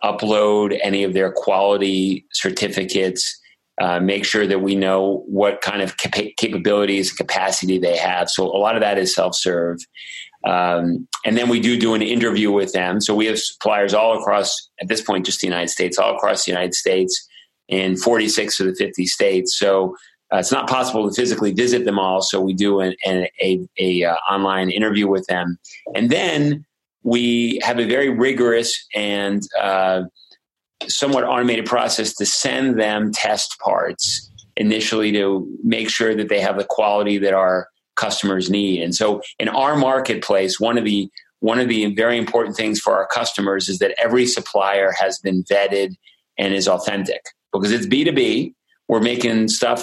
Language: English